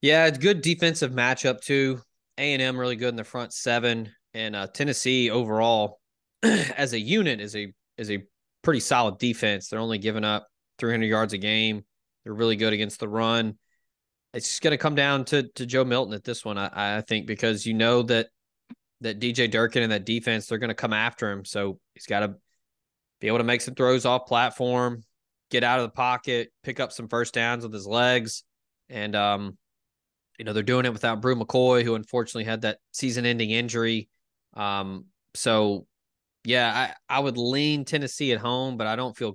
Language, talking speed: English, 195 wpm